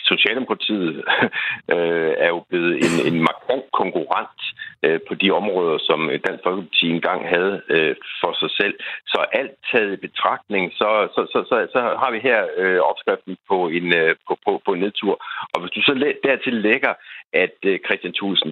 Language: Danish